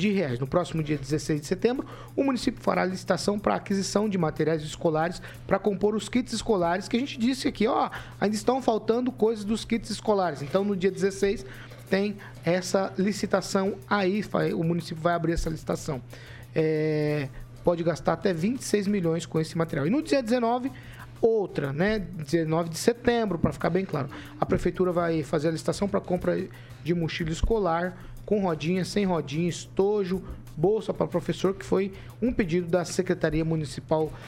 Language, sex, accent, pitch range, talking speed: Portuguese, male, Brazilian, 160-210 Hz, 175 wpm